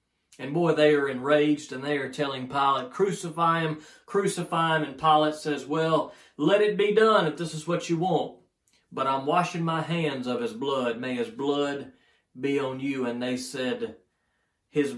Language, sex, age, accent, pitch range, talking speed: English, male, 40-59, American, 125-160 Hz, 185 wpm